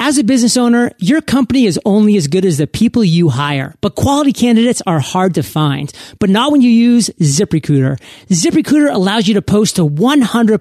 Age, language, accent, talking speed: 30-49, English, American, 200 wpm